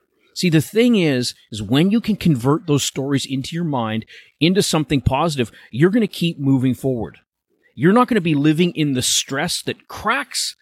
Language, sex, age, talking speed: English, male, 30-49, 190 wpm